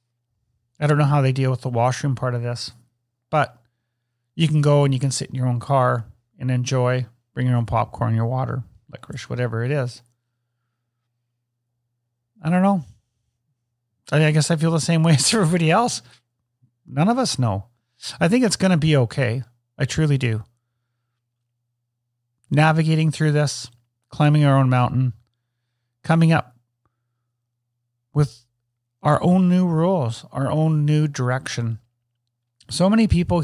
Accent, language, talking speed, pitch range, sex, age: American, English, 150 wpm, 120-140 Hz, male, 40-59